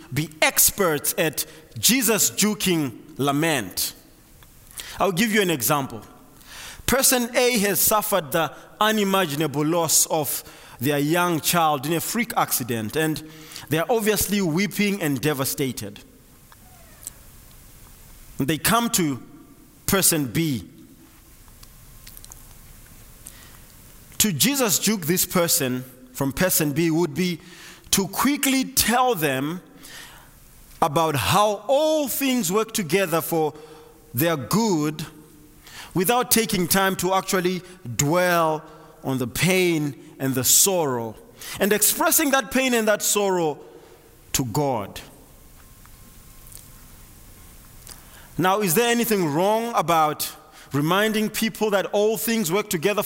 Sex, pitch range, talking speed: male, 150-205 Hz, 105 wpm